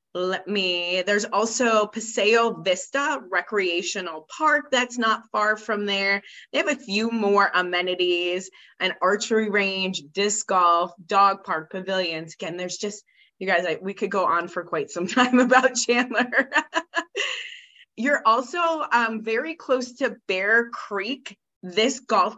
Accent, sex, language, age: American, female, English, 20-39